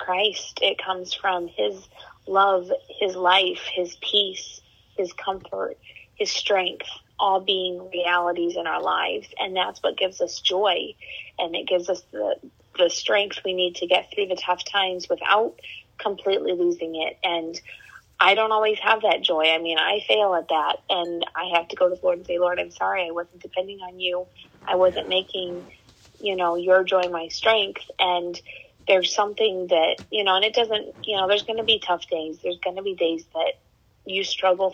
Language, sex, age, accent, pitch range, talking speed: English, female, 30-49, American, 175-205 Hz, 190 wpm